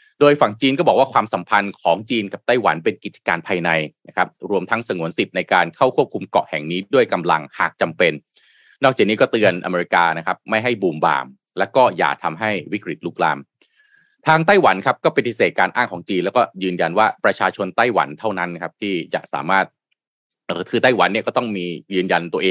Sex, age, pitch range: male, 20-39, 90-140 Hz